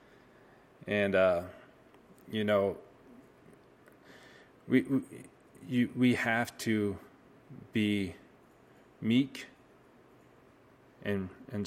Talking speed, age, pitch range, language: 65 wpm, 30-49, 100-120 Hz, English